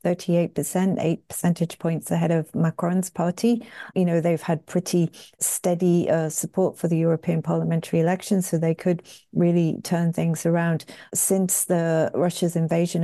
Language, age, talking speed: English, 40-59, 150 wpm